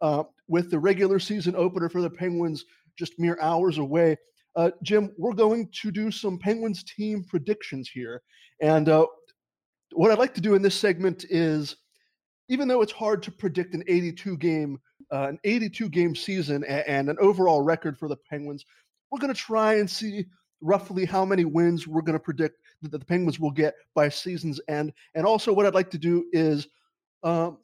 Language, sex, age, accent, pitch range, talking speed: English, male, 30-49, American, 150-195 Hz, 180 wpm